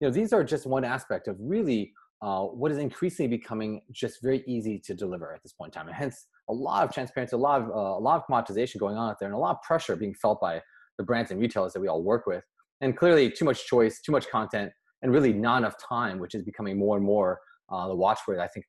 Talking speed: 265 wpm